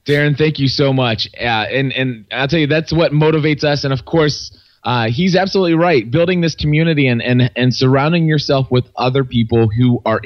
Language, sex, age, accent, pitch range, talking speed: English, male, 20-39, American, 115-145 Hz, 205 wpm